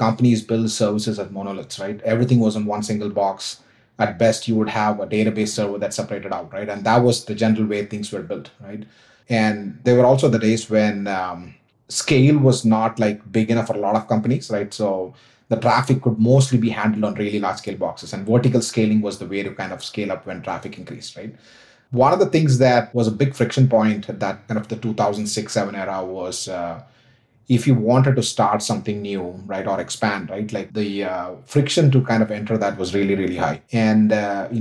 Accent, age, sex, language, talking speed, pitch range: Indian, 30-49, male, English, 220 wpm, 105-120 Hz